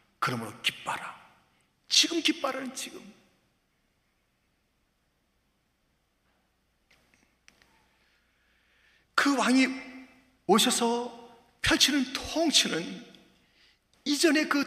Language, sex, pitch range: Korean, male, 185-275 Hz